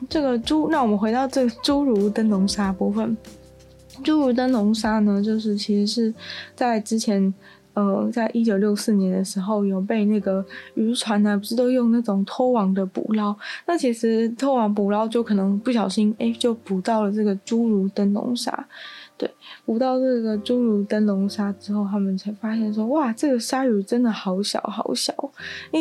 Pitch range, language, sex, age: 205-245 Hz, Chinese, female, 20-39